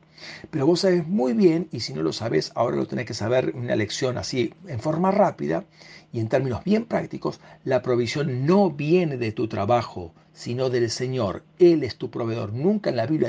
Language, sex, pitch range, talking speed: Spanish, male, 130-185 Hz, 200 wpm